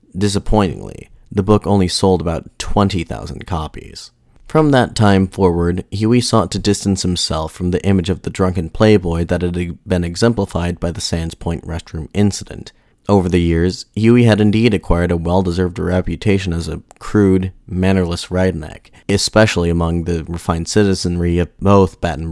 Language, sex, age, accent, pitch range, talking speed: English, male, 30-49, American, 85-100 Hz, 155 wpm